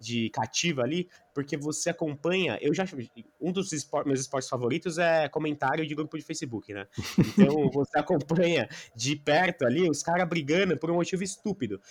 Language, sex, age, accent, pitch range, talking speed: Portuguese, male, 20-39, Brazilian, 135-195 Hz, 170 wpm